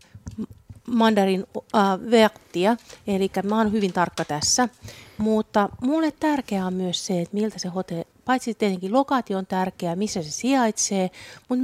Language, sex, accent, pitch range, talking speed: Finnish, female, native, 170-225 Hz, 145 wpm